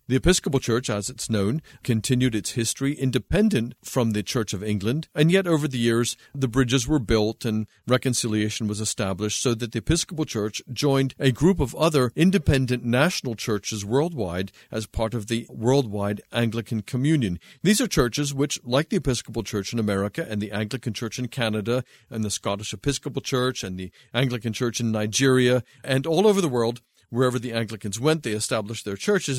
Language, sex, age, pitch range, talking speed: English, male, 50-69, 105-135 Hz, 180 wpm